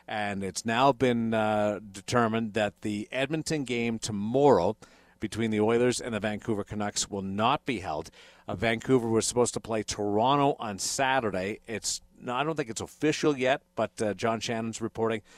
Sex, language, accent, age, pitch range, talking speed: male, English, American, 50-69, 105-125 Hz, 170 wpm